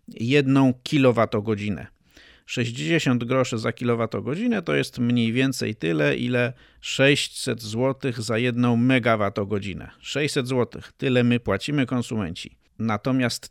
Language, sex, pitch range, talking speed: Polish, male, 115-130 Hz, 105 wpm